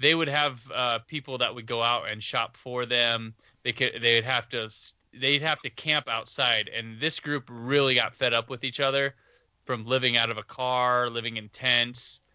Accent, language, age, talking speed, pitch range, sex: American, English, 20-39, 210 wpm, 115-135 Hz, male